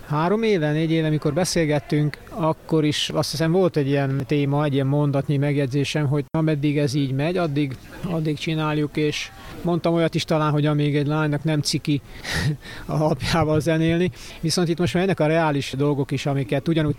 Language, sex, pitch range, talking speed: Hungarian, male, 145-160 Hz, 180 wpm